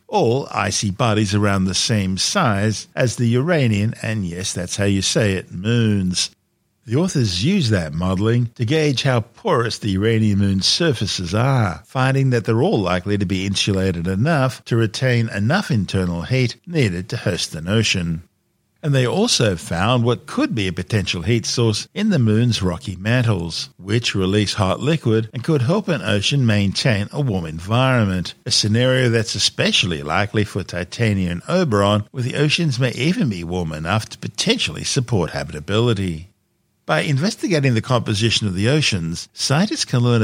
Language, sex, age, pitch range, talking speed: English, male, 50-69, 95-120 Hz, 165 wpm